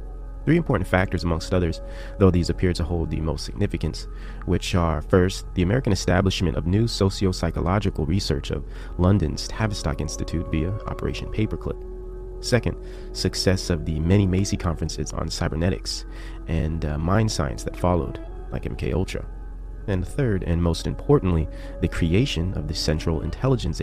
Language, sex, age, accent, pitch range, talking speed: English, male, 30-49, American, 80-100 Hz, 150 wpm